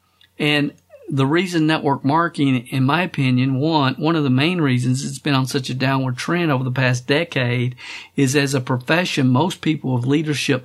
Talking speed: 185 wpm